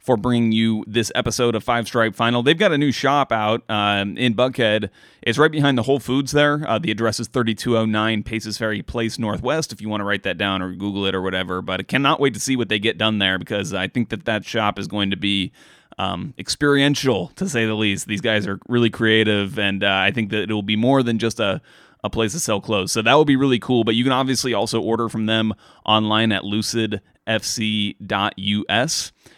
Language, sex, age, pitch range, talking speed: English, male, 30-49, 105-125 Hz, 230 wpm